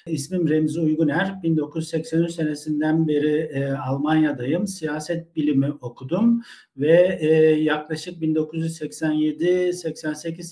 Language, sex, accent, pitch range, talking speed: Turkish, male, native, 140-165 Hz, 85 wpm